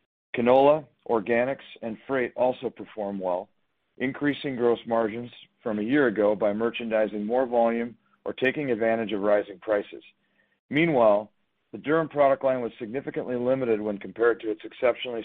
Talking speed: 145 wpm